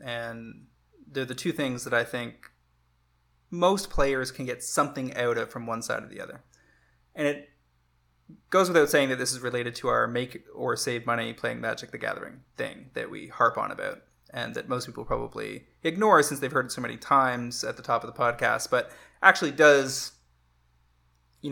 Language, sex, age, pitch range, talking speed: English, male, 20-39, 120-140 Hz, 190 wpm